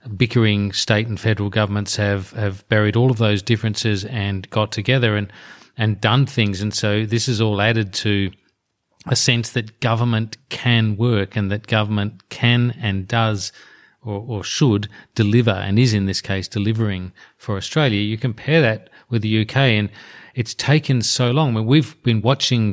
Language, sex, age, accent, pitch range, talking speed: English, male, 40-59, Australian, 105-120 Hz, 175 wpm